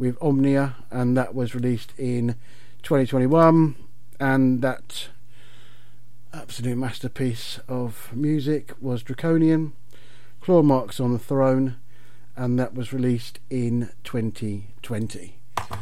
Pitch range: 120-140 Hz